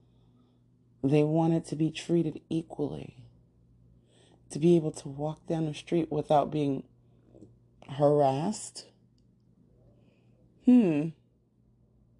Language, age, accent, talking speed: English, 30-49, American, 90 wpm